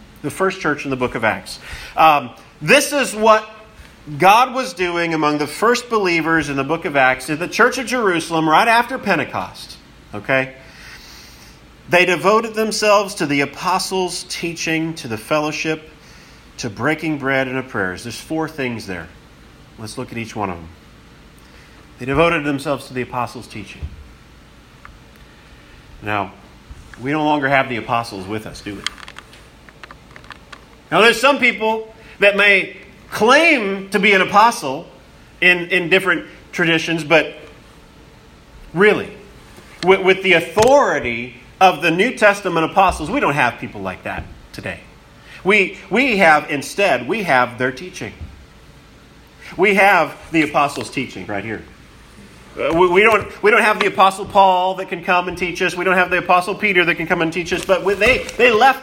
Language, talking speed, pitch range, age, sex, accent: English, 160 wpm, 130-190 Hz, 40-59, male, American